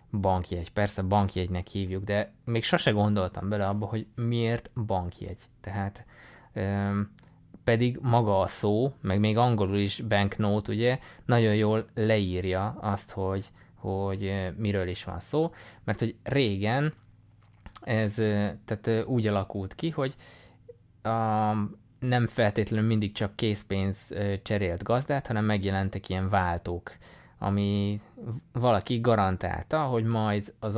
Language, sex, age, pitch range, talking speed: Hungarian, male, 20-39, 95-115 Hz, 115 wpm